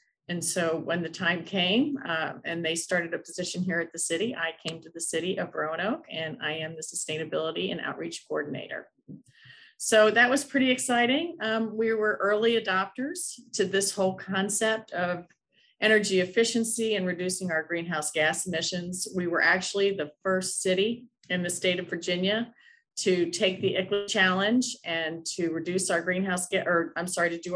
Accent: American